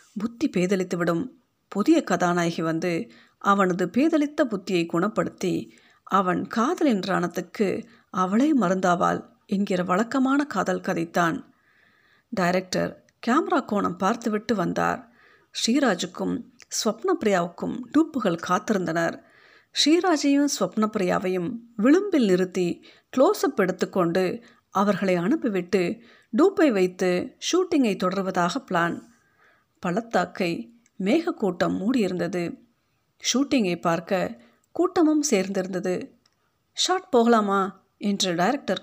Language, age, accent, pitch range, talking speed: Tamil, 50-69, native, 185-260 Hz, 80 wpm